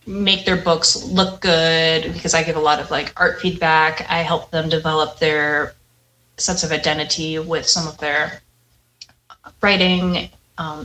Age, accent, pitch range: 20-39, American, 155-185 Hz